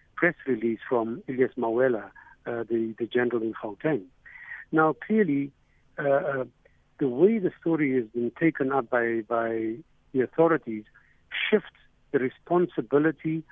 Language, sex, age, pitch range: English, male, 60-79, 120-160 Hz